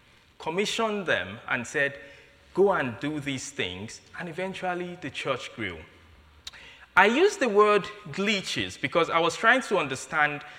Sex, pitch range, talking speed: male, 115-165 Hz, 140 wpm